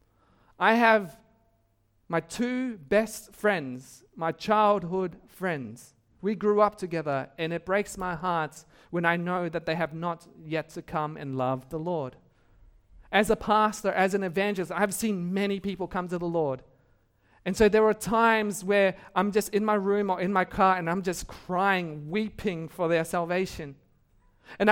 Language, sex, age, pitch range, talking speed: English, male, 40-59, 155-210 Hz, 170 wpm